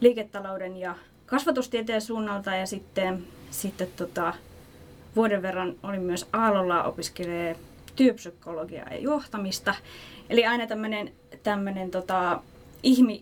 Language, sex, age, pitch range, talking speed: Finnish, female, 20-39, 185-235 Hz, 100 wpm